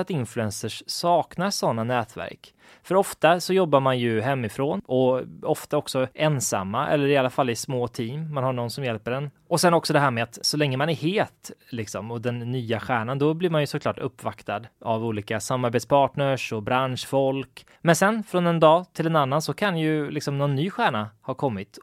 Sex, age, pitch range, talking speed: male, 20-39, 120-155 Hz, 200 wpm